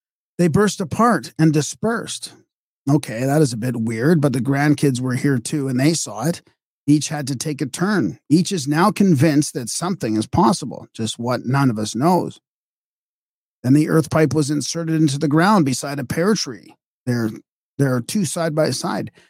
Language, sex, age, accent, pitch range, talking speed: English, male, 40-59, American, 125-155 Hz, 190 wpm